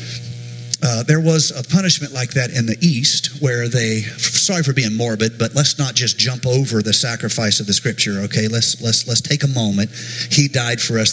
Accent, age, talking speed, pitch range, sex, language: American, 50-69, 205 wpm, 105-125 Hz, male, English